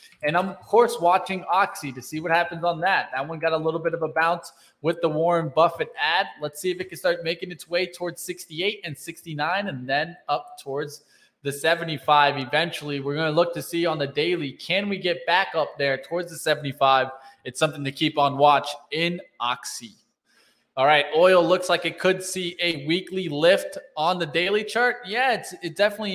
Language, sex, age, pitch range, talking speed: English, male, 20-39, 145-180 Hz, 210 wpm